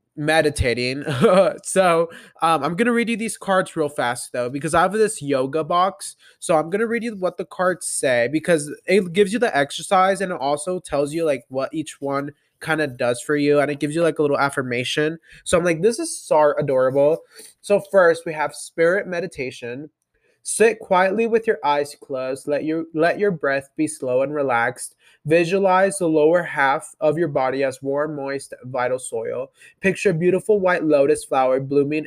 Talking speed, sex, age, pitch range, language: 190 wpm, male, 20-39, 140-180 Hz, English